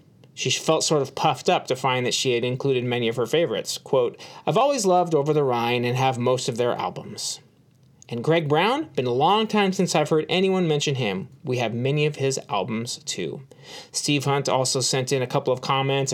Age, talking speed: 30-49, 215 wpm